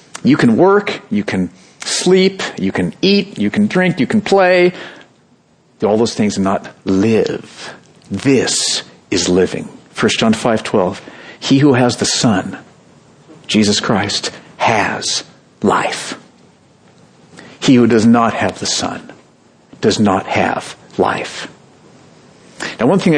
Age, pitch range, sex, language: 50-69, 120-180 Hz, male, English